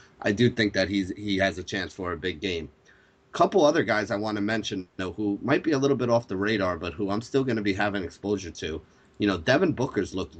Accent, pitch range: American, 95-110 Hz